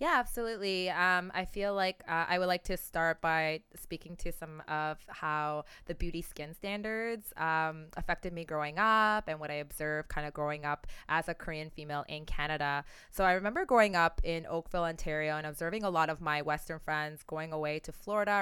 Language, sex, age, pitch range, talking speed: English, female, 20-39, 160-205 Hz, 200 wpm